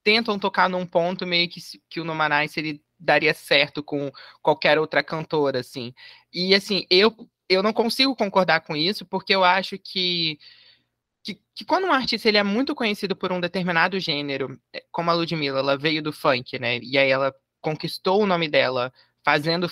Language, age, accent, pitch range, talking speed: Portuguese, 20-39, Brazilian, 165-210 Hz, 180 wpm